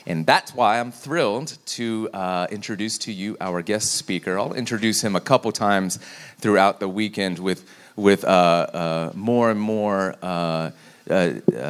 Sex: male